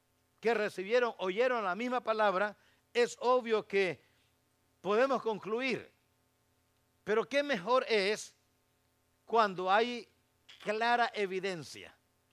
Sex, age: male, 50-69